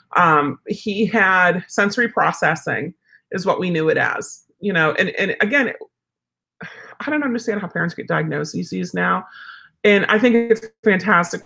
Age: 40-59